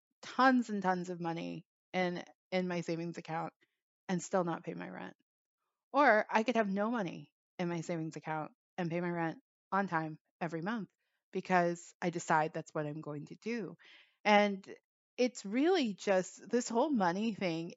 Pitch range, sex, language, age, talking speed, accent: 170-210 Hz, female, English, 20-39, 170 wpm, American